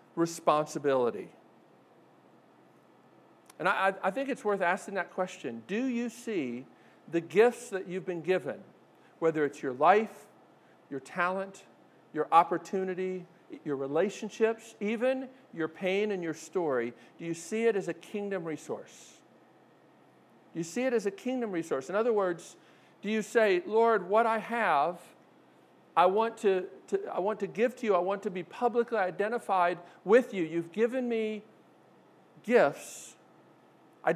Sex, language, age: male, English, 50-69